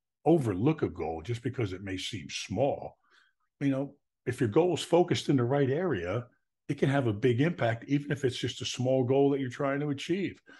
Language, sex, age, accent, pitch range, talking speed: English, male, 50-69, American, 100-135 Hz, 215 wpm